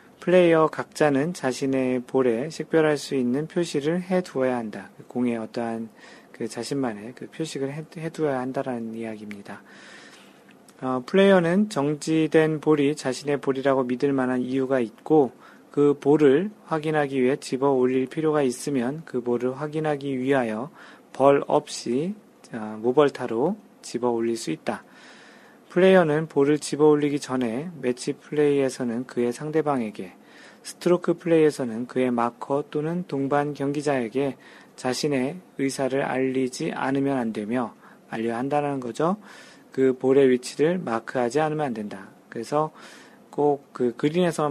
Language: Korean